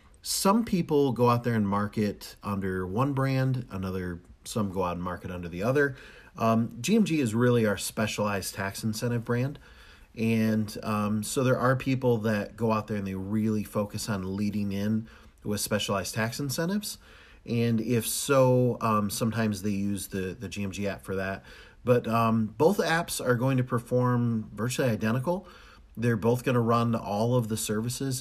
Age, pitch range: 40-59, 100-120 Hz